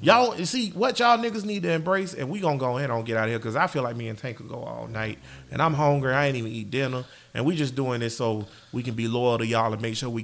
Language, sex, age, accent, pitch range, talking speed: English, male, 30-49, American, 120-195 Hz, 315 wpm